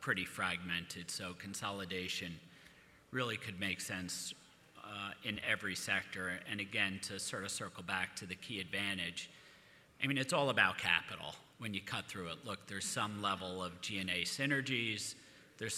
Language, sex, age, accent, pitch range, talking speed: English, male, 40-59, American, 95-110 Hz, 160 wpm